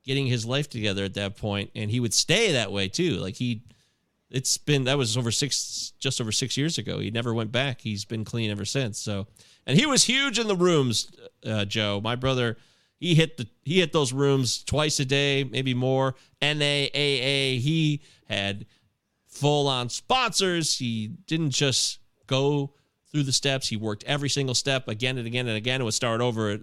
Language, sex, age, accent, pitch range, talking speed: English, male, 30-49, American, 115-160 Hz, 205 wpm